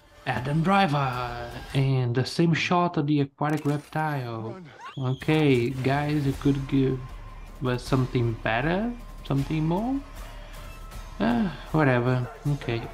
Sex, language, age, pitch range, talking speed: male, English, 20-39, 120-155 Hz, 110 wpm